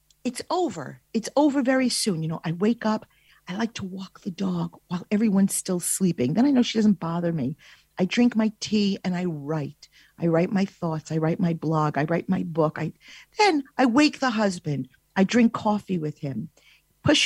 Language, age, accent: English, 50-69, American